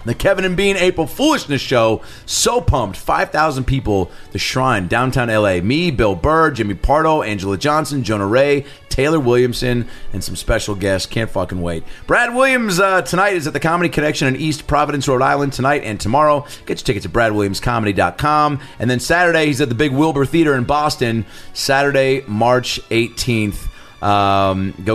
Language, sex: English, male